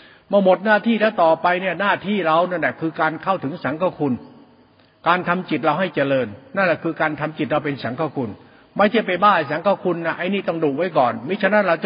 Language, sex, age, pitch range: Thai, male, 60-79, 150-180 Hz